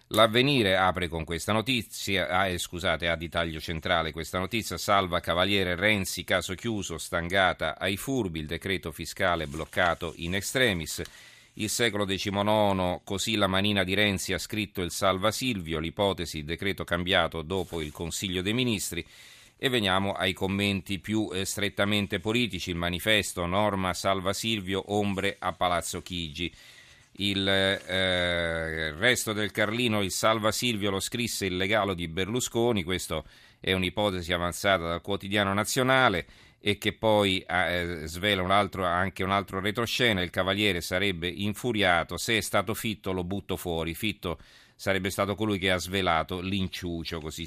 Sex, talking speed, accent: male, 145 wpm, native